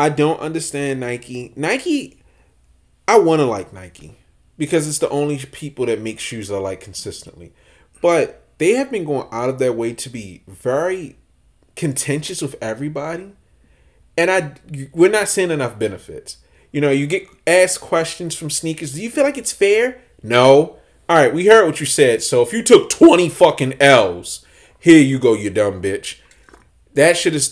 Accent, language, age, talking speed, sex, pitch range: American, English, 30-49, 175 wpm, male, 110-165 Hz